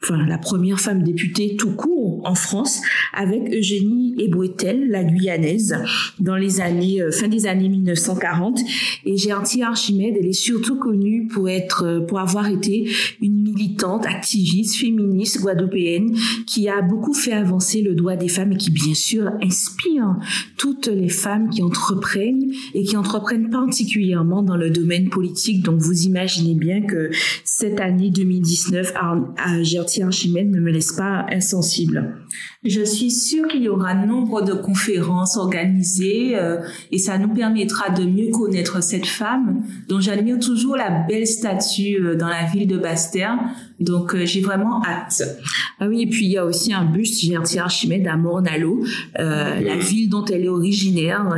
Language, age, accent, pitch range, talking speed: French, 50-69, French, 175-215 Hz, 160 wpm